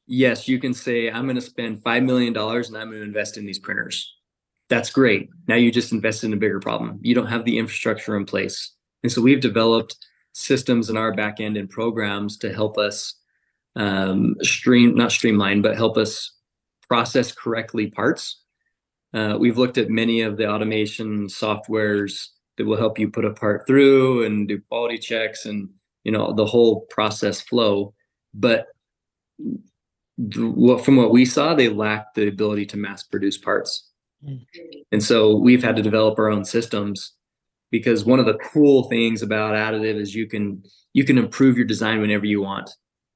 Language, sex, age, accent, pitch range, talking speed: English, male, 20-39, American, 105-120 Hz, 175 wpm